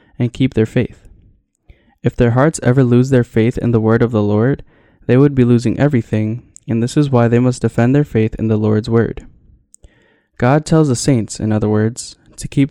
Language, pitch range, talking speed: English, 110-130 Hz, 210 wpm